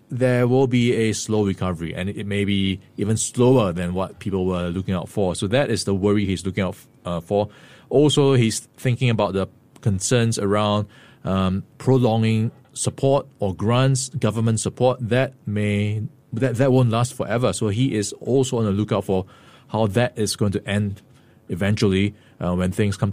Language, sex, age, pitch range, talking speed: English, male, 20-39, 100-125 Hz, 180 wpm